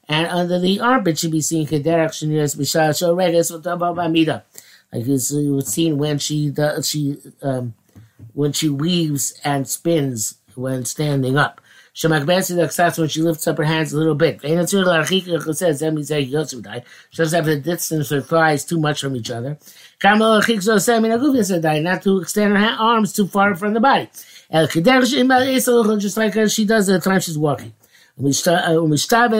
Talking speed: 135 wpm